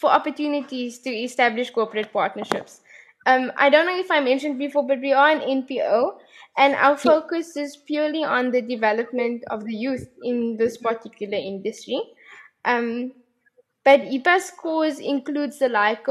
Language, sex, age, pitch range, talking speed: English, female, 10-29, 235-280 Hz, 155 wpm